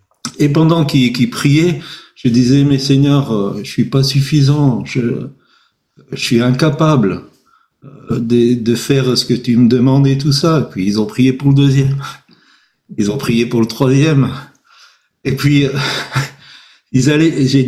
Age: 50-69